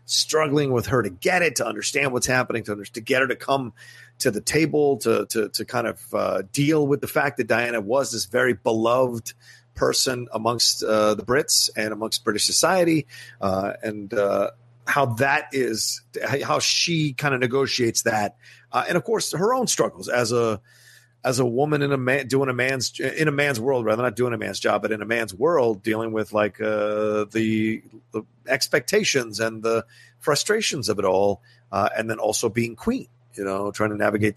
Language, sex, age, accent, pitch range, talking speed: English, male, 40-59, American, 110-130 Hz, 200 wpm